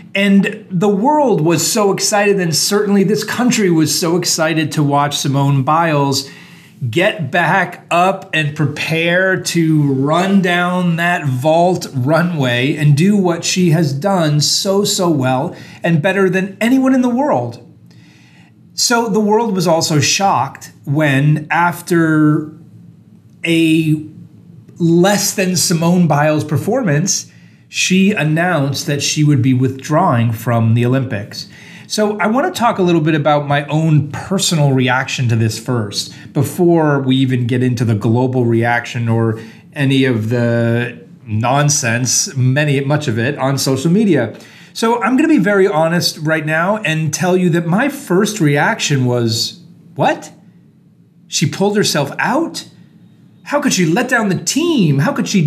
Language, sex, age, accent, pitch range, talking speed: English, male, 30-49, American, 140-190 Hz, 145 wpm